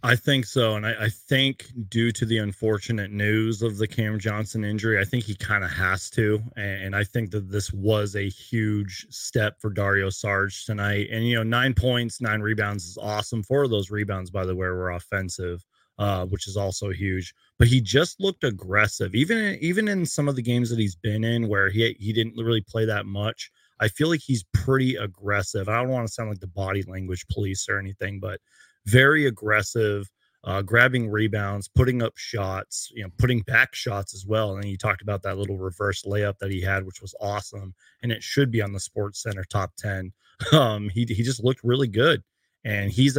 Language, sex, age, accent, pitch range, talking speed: English, male, 30-49, American, 100-120 Hz, 210 wpm